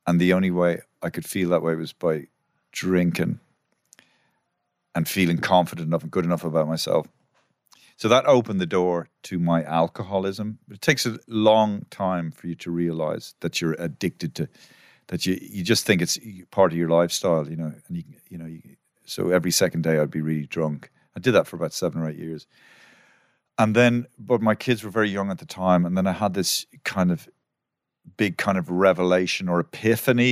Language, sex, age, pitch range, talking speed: English, male, 40-59, 85-100 Hz, 190 wpm